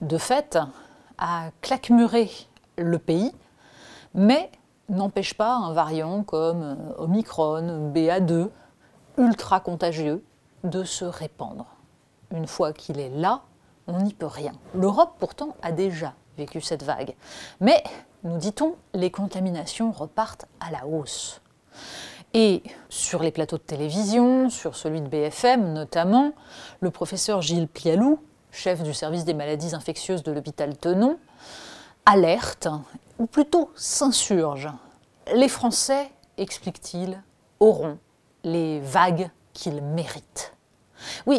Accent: French